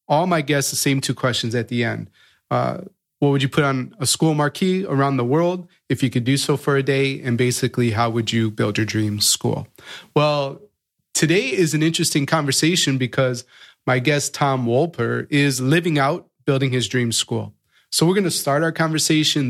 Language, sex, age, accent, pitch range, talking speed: English, male, 30-49, American, 125-160 Hz, 195 wpm